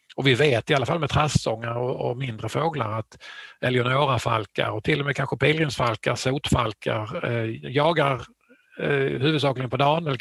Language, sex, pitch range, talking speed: Swedish, male, 120-150 Hz, 165 wpm